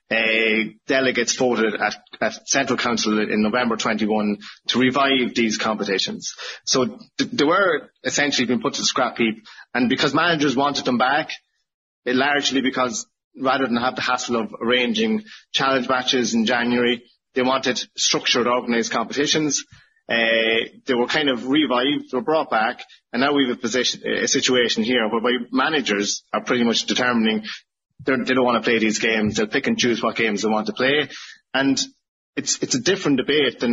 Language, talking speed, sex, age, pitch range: English, 175 wpm, male, 30-49, 115-140 Hz